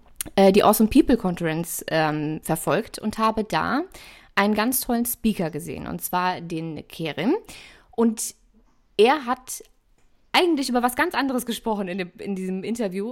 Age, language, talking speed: 20-39, German, 145 wpm